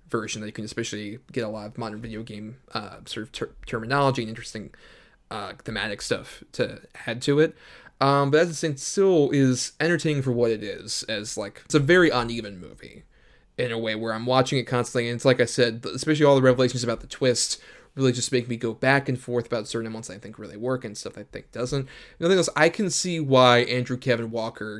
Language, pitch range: English, 115-135 Hz